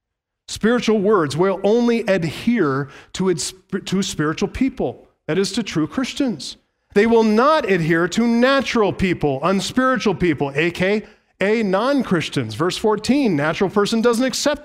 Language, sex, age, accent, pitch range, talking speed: English, male, 40-59, American, 160-220 Hz, 125 wpm